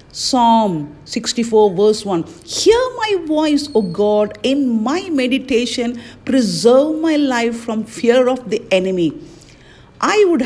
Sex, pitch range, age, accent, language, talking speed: female, 195-270 Hz, 50-69, Indian, English, 125 wpm